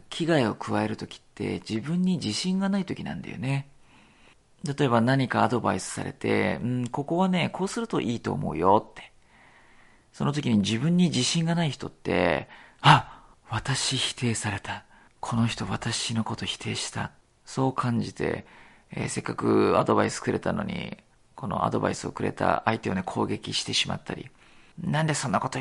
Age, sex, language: 40-59, male, Japanese